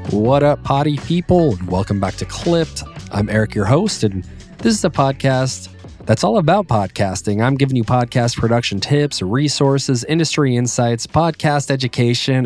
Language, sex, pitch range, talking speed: English, male, 105-140 Hz, 160 wpm